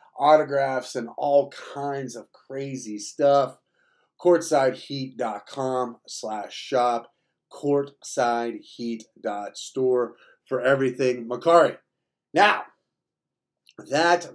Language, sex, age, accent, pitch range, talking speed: English, male, 40-59, American, 120-155 Hz, 65 wpm